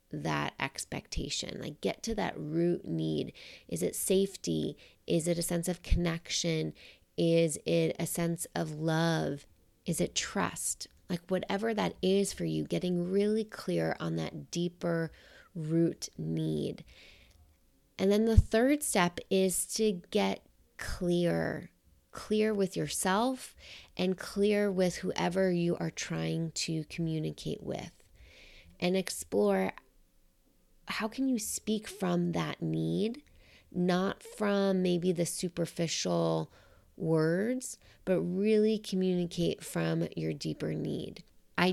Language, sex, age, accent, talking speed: English, female, 30-49, American, 120 wpm